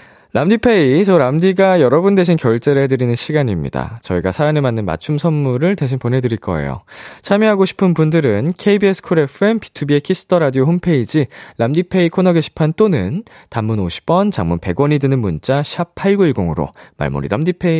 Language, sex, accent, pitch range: Korean, male, native, 110-185 Hz